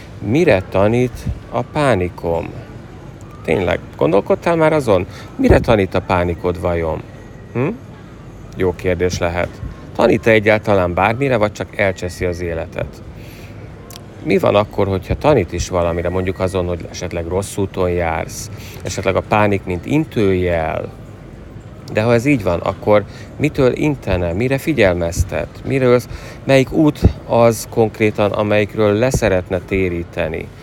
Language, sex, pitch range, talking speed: Hungarian, male, 90-115 Hz, 120 wpm